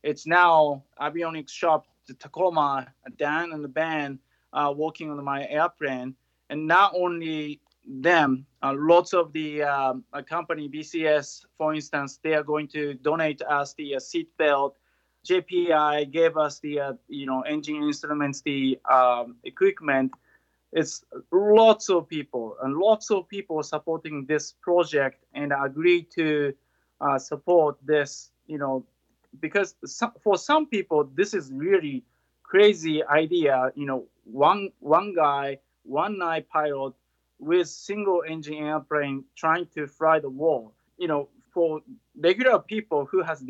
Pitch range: 145-185 Hz